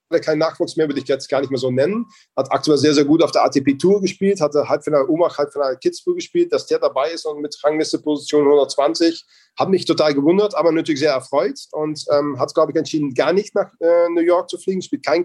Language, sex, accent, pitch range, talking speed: German, male, German, 135-175 Hz, 230 wpm